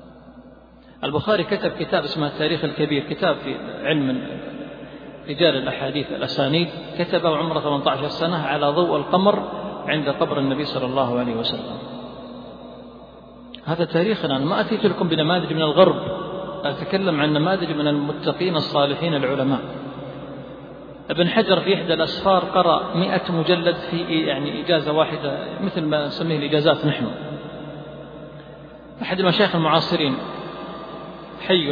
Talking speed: 120 wpm